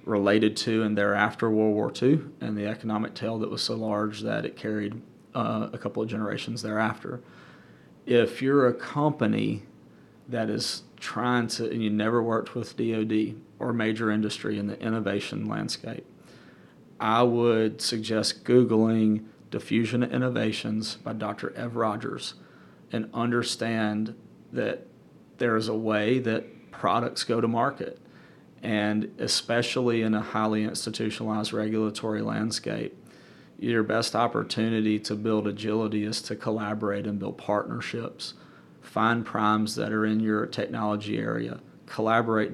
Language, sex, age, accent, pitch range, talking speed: English, male, 40-59, American, 105-115 Hz, 135 wpm